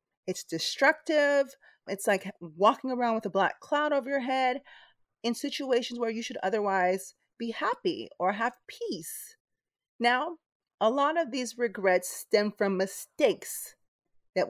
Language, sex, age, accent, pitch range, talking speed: English, female, 30-49, American, 180-245 Hz, 140 wpm